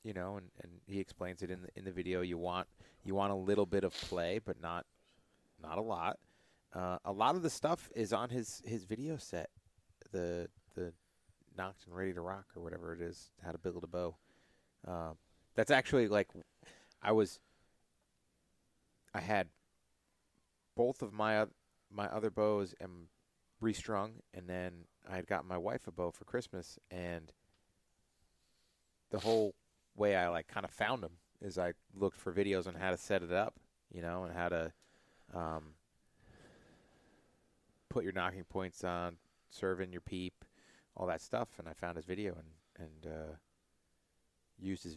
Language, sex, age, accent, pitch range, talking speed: English, male, 30-49, American, 85-100 Hz, 175 wpm